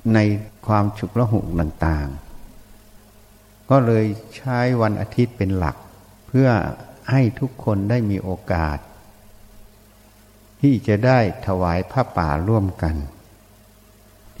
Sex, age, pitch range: male, 60-79, 105-120 Hz